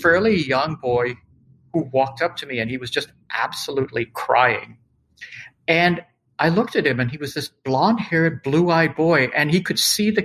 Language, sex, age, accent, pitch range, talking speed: English, male, 50-69, American, 125-160 Hz, 195 wpm